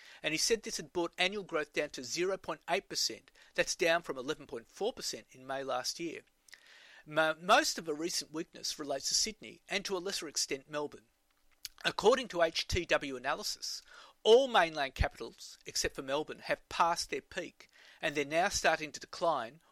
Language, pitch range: English, 155-195 Hz